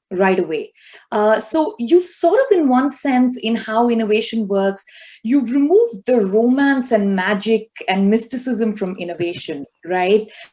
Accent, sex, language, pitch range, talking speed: Indian, female, English, 210-265 Hz, 140 wpm